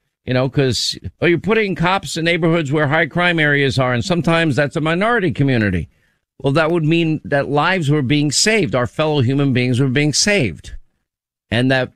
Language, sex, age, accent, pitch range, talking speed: English, male, 50-69, American, 120-150 Hz, 190 wpm